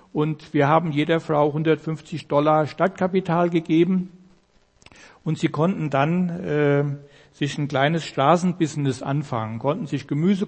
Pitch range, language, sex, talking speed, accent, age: 150-170 Hz, German, male, 125 wpm, German, 60-79